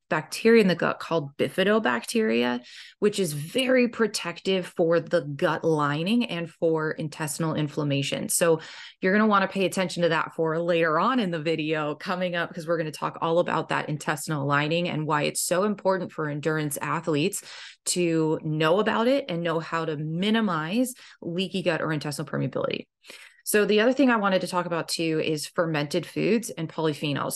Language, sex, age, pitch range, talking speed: English, female, 20-39, 155-185 Hz, 180 wpm